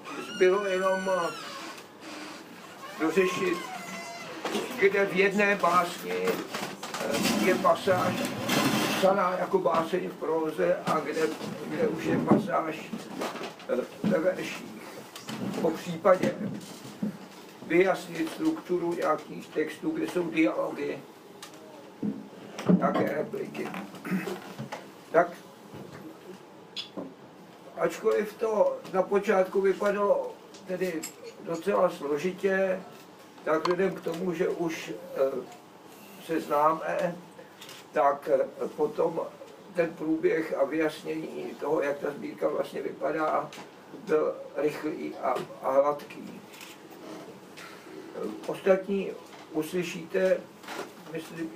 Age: 60-79